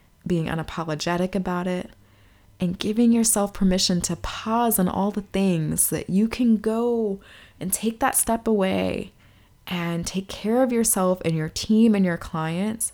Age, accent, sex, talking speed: 20-39, American, female, 160 wpm